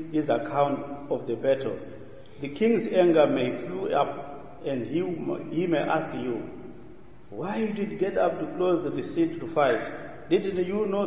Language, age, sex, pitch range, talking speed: English, 50-69, male, 145-175 Hz, 170 wpm